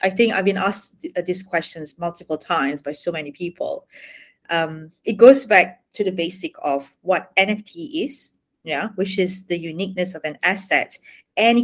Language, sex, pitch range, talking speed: English, female, 170-220 Hz, 170 wpm